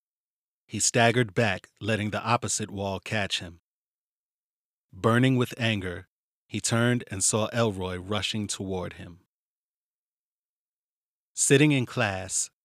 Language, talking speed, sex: English, 110 wpm, male